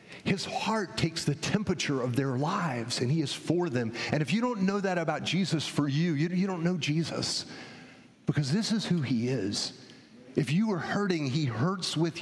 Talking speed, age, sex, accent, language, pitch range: 200 wpm, 40-59, male, American, English, 155-225 Hz